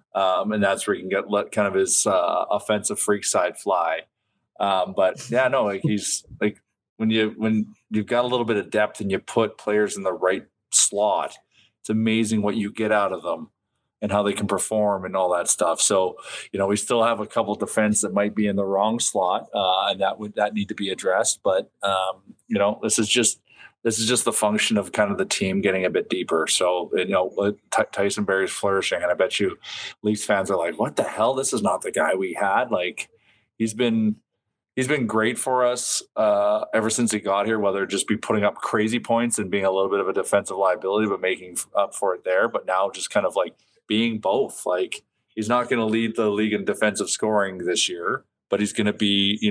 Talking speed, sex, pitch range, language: 235 wpm, male, 100-115 Hz, English